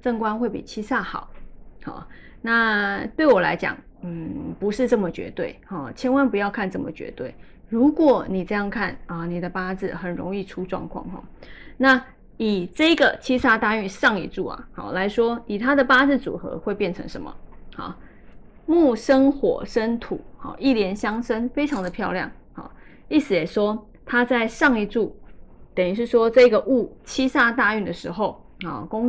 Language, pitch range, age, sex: Chinese, 205-260 Hz, 20-39, female